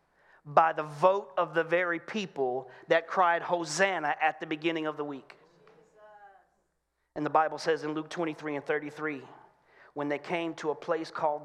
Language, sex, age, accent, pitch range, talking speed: English, male, 40-59, American, 145-175 Hz, 170 wpm